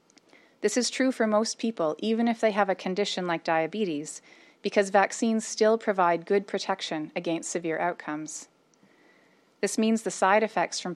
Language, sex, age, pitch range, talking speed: English, female, 30-49, 175-225 Hz, 160 wpm